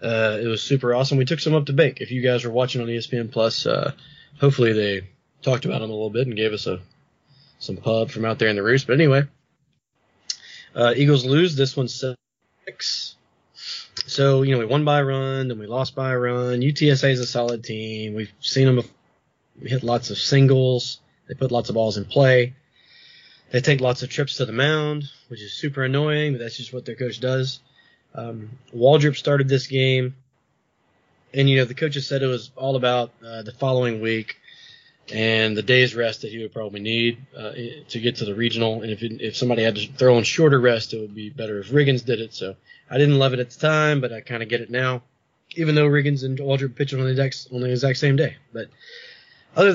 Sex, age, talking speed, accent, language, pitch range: male, 20-39, 220 wpm, American, English, 120-140 Hz